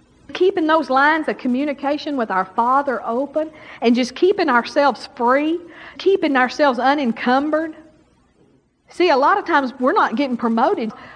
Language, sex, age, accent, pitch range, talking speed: English, female, 50-69, American, 235-310 Hz, 140 wpm